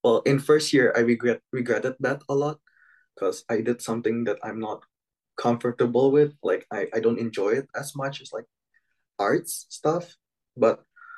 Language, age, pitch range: English, 20-39, 115-150 Hz